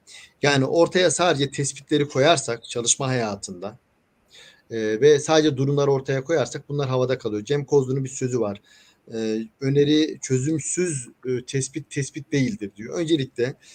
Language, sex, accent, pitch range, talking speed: Turkish, male, native, 125-160 Hz, 130 wpm